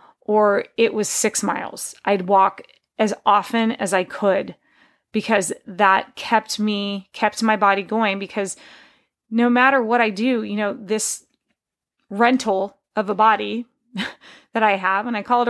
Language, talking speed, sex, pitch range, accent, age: English, 155 wpm, female, 205-255 Hz, American, 30-49